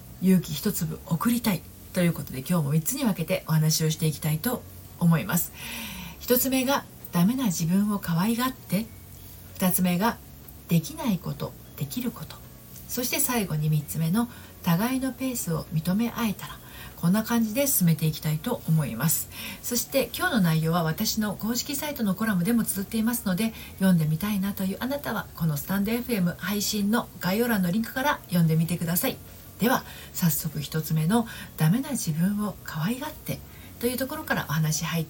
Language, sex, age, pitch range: Japanese, female, 40-59, 155-225 Hz